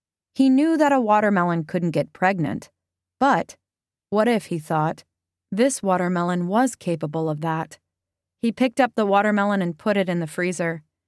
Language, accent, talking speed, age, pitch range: English, American, 160 wpm, 20-39, 170-210 Hz